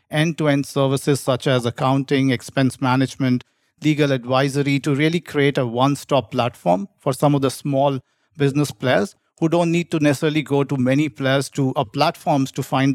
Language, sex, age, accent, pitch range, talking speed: English, male, 50-69, Indian, 125-145 Hz, 165 wpm